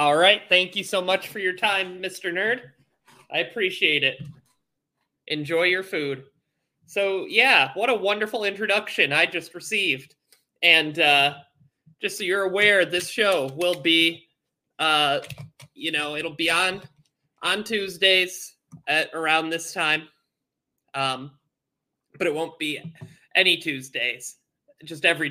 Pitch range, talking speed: 150-190 Hz, 135 wpm